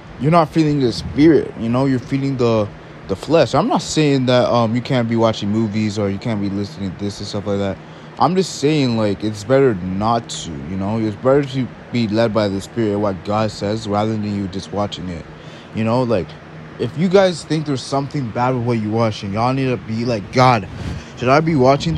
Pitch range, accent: 100-140 Hz, American